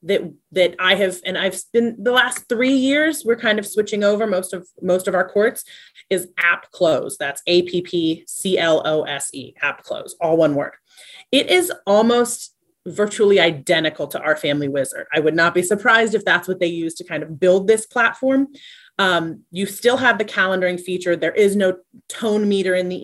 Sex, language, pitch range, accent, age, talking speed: female, English, 165-210 Hz, American, 30-49, 205 wpm